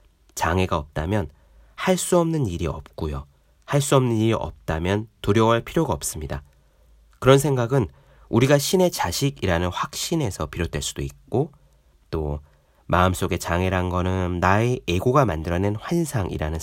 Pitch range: 80-135 Hz